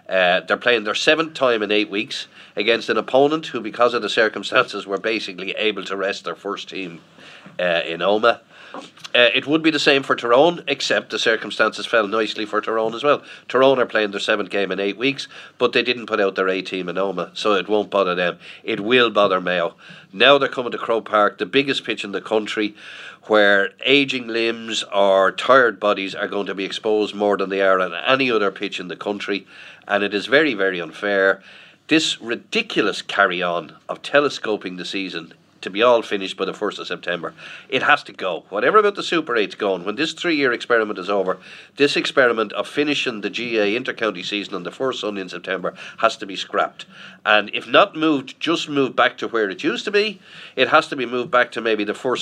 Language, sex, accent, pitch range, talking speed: English, male, Irish, 100-135 Hz, 215 wpm